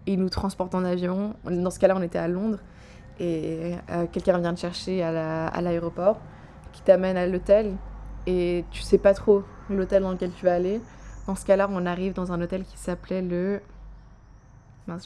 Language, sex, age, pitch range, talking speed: French, female, 20-39, 175-200 Hz, 200 wpm